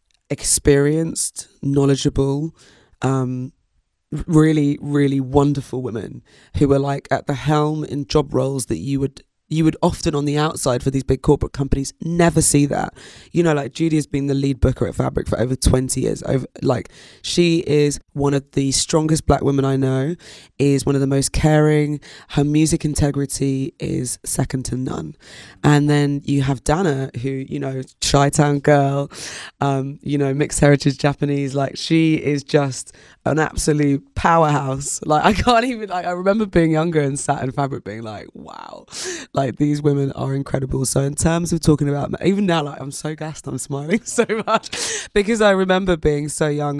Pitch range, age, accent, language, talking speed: 135-155 Hz, 20-39, British, English, 180 wpm